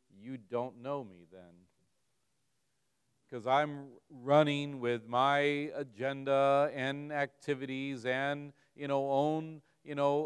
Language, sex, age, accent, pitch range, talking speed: English, male, 40-59, American, 115-145 Hz, 110 wpm